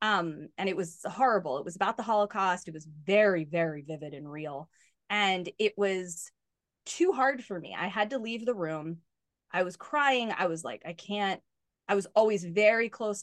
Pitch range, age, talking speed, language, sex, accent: 175-230 Hz, 20-39, 195 wpm, English, female, American